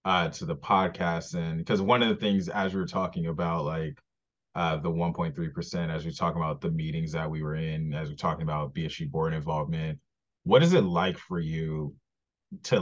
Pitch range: 80-90 Hz